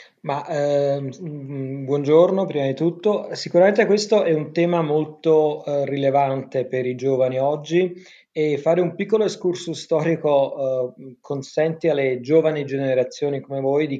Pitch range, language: 130-160 Hz, Italian